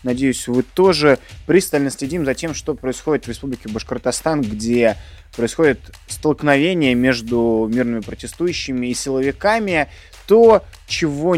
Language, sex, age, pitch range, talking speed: Russian, male, 20-39, 115-150 Hz, 115 wpm